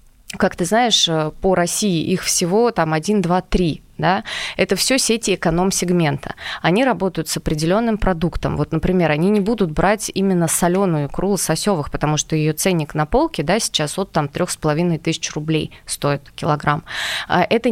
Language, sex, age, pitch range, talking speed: Russian, female, 20-39, 160-205 Hz, 160 wpm